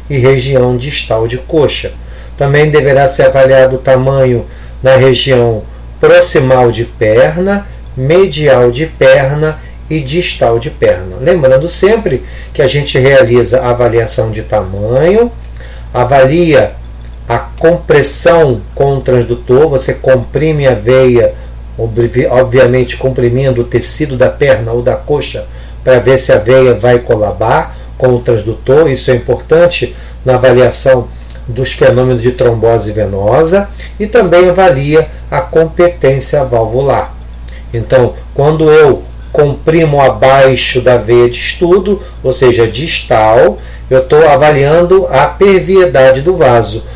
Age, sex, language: 40-59, male, Portuguese